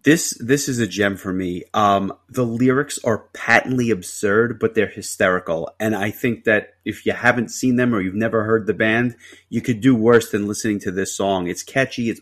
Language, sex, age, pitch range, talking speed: English, male, 30-49, 100-125 Hz, 210 wpm